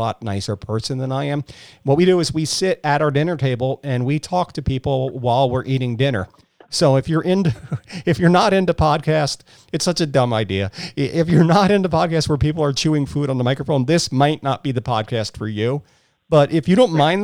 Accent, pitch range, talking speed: American, 125-160 Hz, 225 wpm